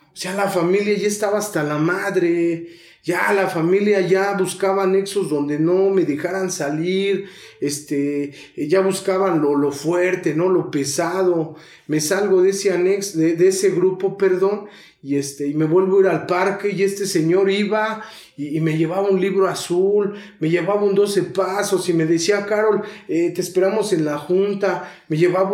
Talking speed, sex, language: 180 wpm, male, Spanish